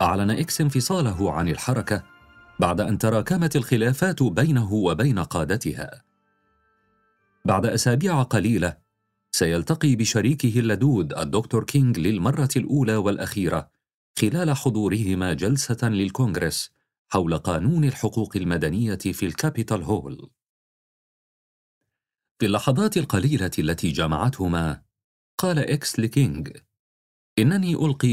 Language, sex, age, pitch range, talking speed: Arabic, male, 40-59, 95-135 Hz, 95 wpm